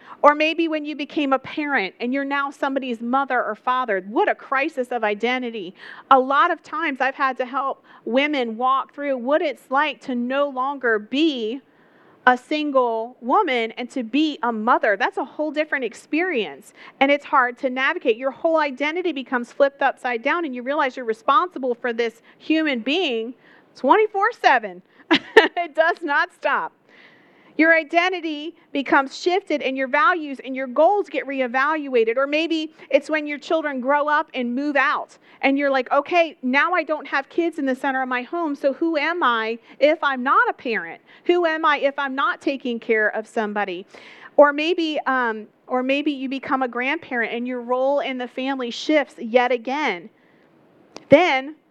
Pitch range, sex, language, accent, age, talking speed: 250-310 Hz, female, English, American, 40-59, 175 wpm